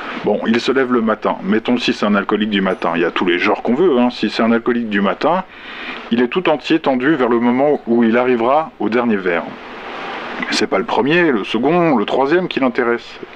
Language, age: French, 50-69